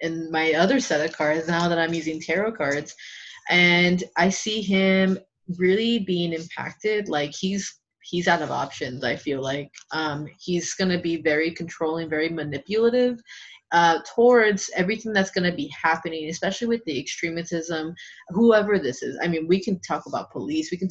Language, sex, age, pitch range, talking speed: English, female, 20-39, 165-200 Hz, 175 wpm